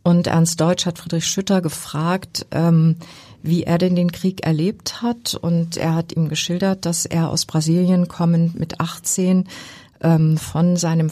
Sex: female